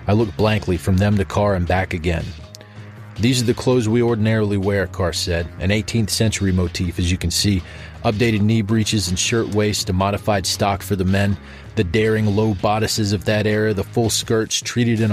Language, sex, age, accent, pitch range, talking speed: English, male, 30-49, American, 95-115 Hz, 200 wpm